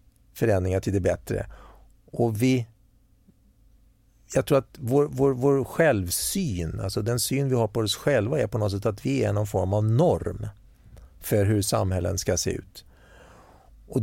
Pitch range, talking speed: 100-130 Hz, 165 wpm